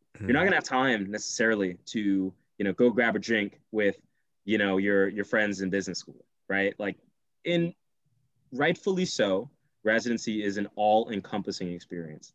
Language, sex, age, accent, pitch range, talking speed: English, male, 20-39, American, 95-130 Hz, 160 wpm